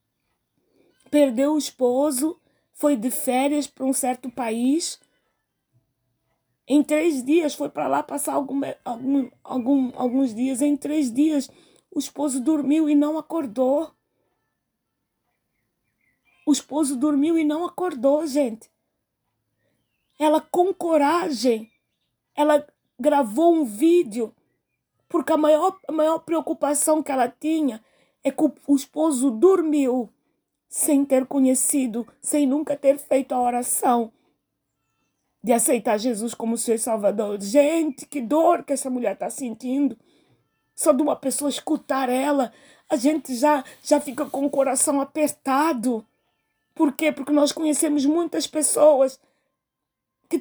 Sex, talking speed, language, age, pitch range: female, 120 wpm, Portuguese, 20-39, 255-310 Hz